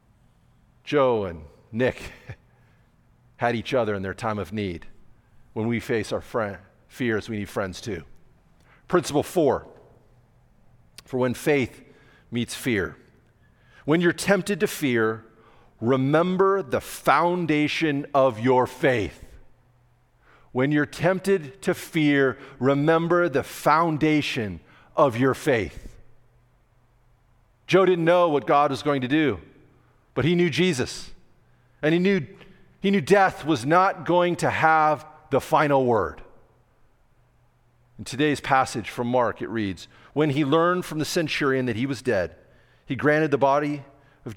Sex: male